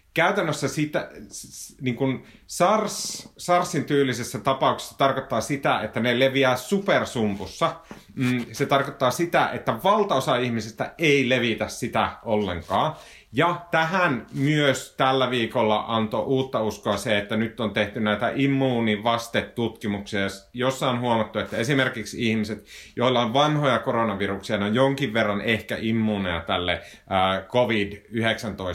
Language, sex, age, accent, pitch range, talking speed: Finnish, male, 30-49, native, 105-135 Hz, 115 wpm